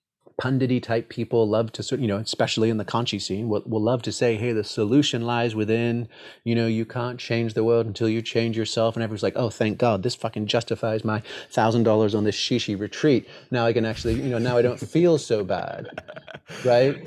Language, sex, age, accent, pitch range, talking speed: English, male, 30-49, American, 110-125 Hz, 220 wpm